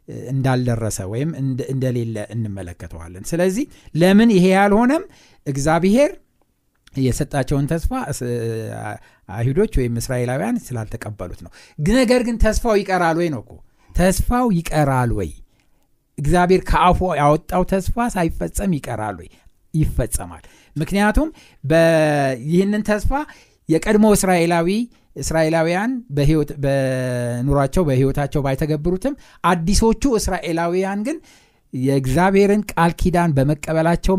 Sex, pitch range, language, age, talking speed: male, 130-200 Hz, Amharic, 60-79, 80 wpm